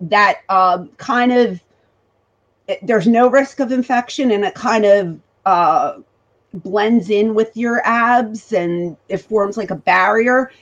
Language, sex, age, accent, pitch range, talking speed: English, female, 40-59, American, 185-235 Hz, 140 wpm